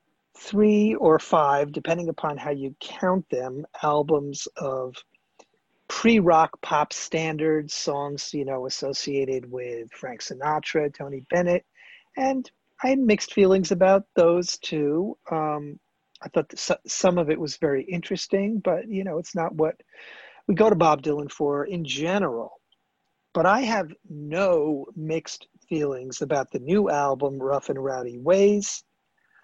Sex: male